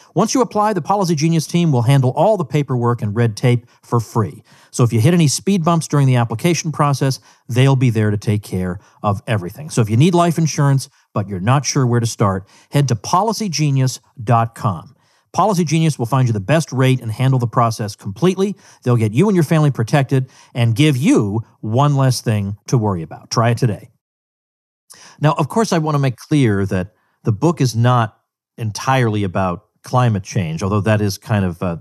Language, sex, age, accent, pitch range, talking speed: English, male, 50-69, American, 105-145 Hz, 200 wpm